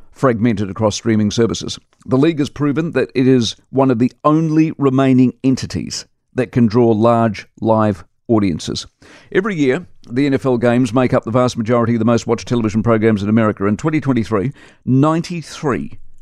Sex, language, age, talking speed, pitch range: male, English, 50-69, 165 wpm, 110-135 Hz